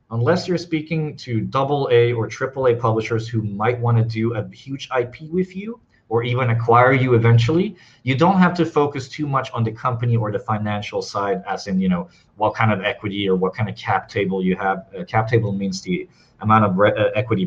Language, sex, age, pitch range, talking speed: English, male, 30-49, 115-155 Hz, 220 wpm